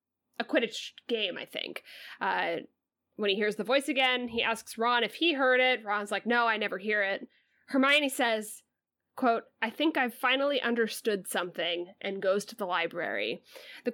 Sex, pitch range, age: female, 205-250 Hz, 10-29